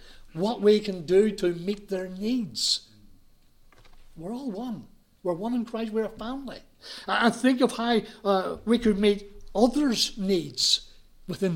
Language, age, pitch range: English, 60-79, 155-215 Hz